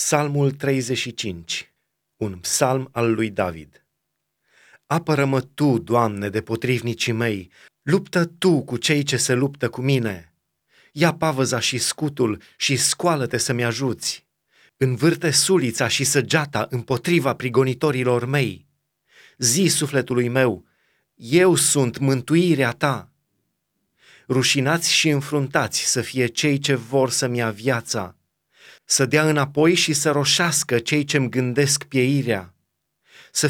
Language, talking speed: Romanian, 120 wpm